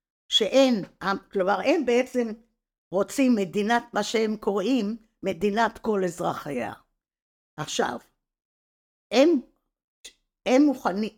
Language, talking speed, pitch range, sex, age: Hebrew, 85 wpm, 195-270 Hz, female, 50-69